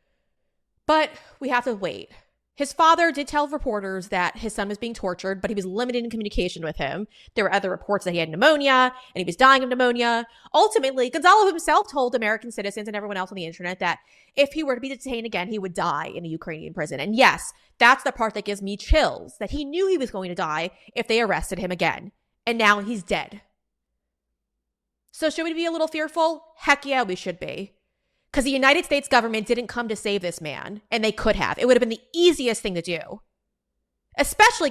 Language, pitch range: English, 200-275 Hz